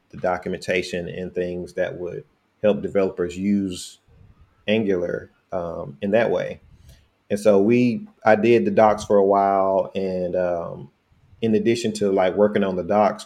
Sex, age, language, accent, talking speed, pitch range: male, 30-49, English, American, 155 wpm, 95-105 Hz